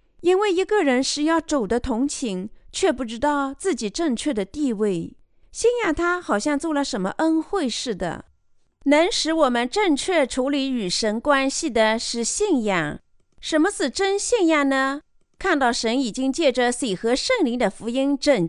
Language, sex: Chinese, female